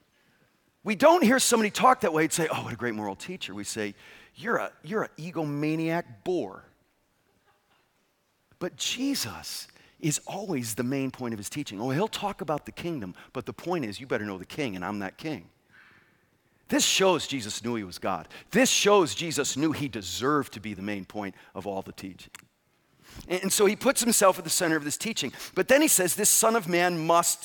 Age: 40-59